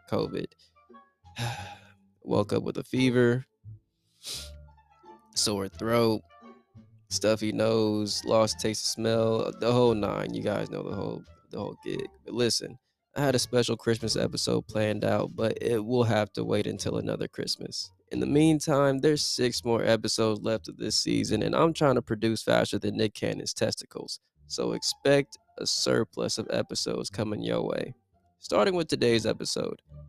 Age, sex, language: 20-39, male, English